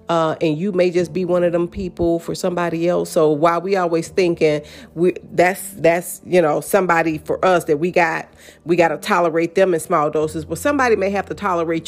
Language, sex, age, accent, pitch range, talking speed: English, female, 40-59, American, 165-200 Hz, 215 wpm